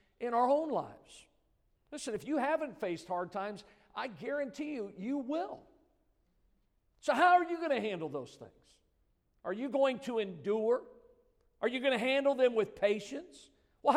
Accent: American